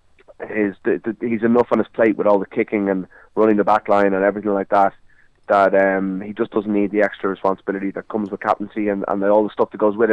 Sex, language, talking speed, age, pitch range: male, English, 255 wpm, 20-39, 100-105 Hz